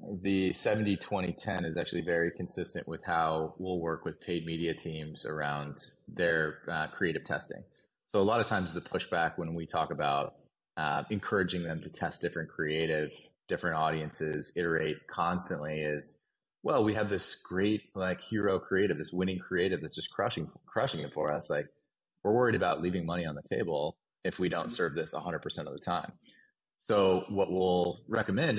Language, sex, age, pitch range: English, male, 20-39, 80-100 Hz